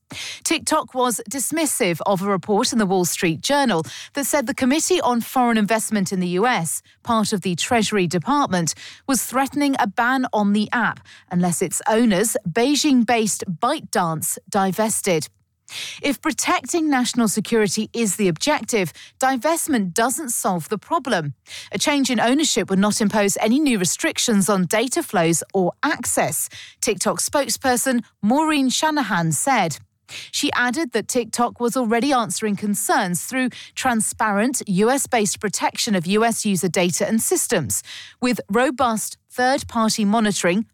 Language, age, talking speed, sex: English, 40-59, 135 wpm, female